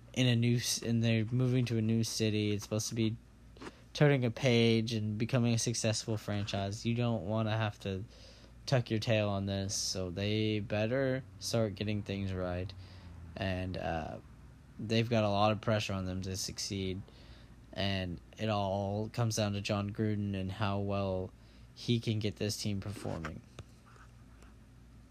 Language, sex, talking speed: English, male, 165 wpm